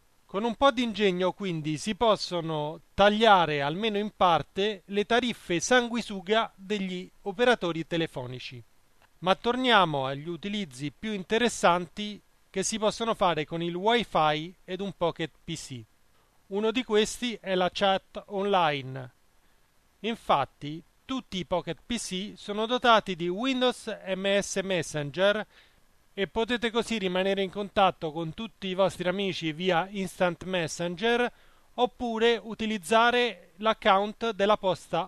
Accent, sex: native, male